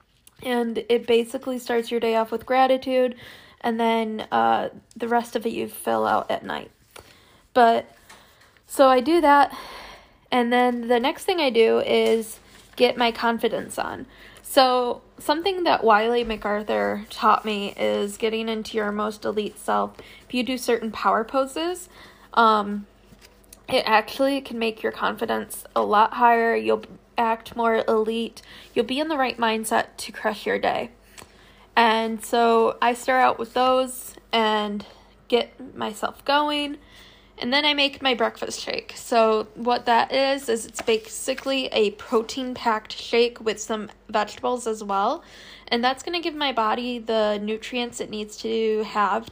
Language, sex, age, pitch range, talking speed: English, female, 10-29, 220-255 Hz, 155 wpm